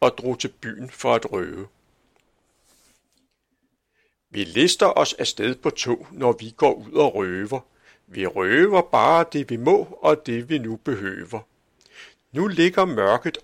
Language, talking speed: Danish, 145 wpm